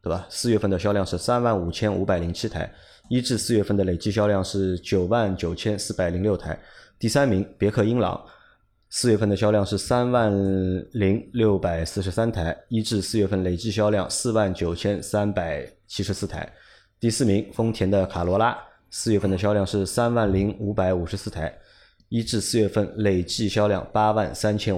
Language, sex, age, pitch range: Chinese, male, 20-39, 95-110 Hz